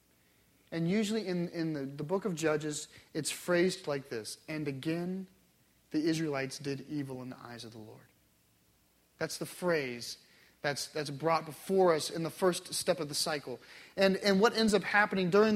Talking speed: 180 wpm